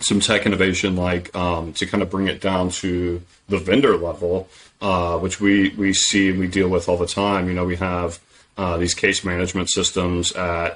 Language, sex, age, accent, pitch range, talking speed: English, male, 30-49, American, 85-95 Hz, 205 wpm